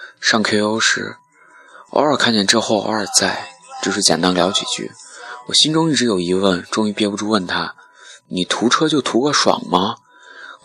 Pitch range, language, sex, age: 95-130 Hz, Chinese, male, 20-39